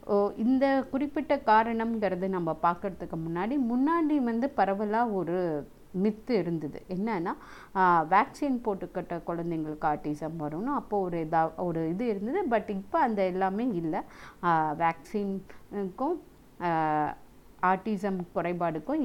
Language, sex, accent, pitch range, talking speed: Tamil, female, native, 165-220 Hz, 105 wpm